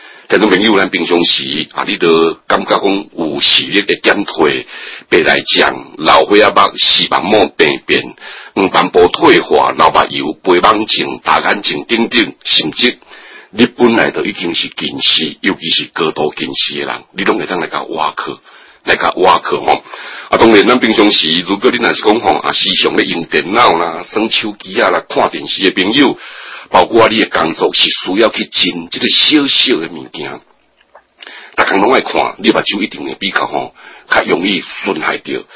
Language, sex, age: Chinese, male, 60-79